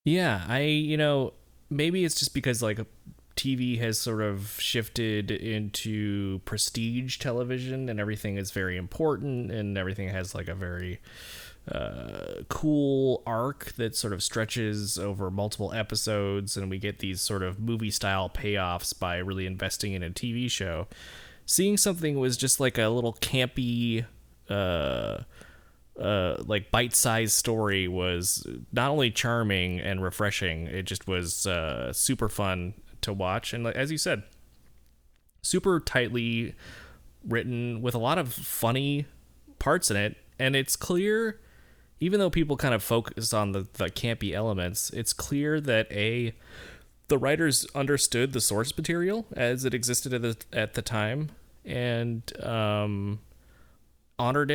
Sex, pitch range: male, 95-125 Hz